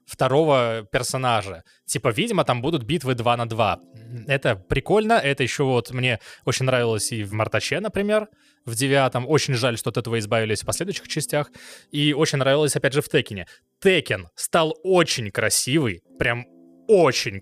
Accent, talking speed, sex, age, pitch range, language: native, 160 wpm, male, 20-39, 125-170 Hz, Russian